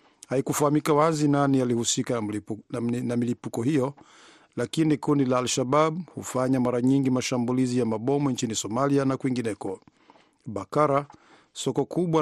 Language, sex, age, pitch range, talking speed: Swahili, male, 50-69, 125-145 Hz, 125 wpm